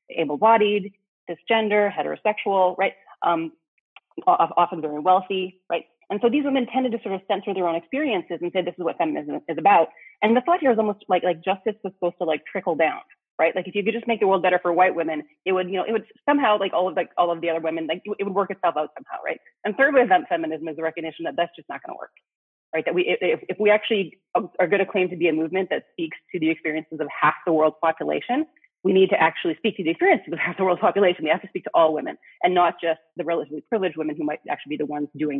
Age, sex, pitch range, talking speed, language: 30-49, female, 160-205 Hz, 260 wpm, English